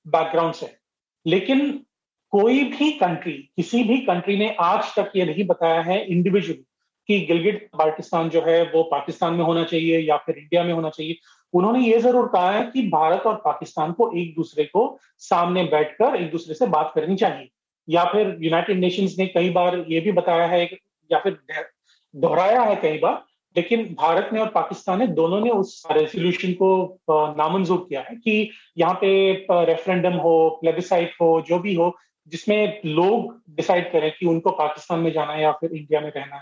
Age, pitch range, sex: 30-49, 165-205 Hz, male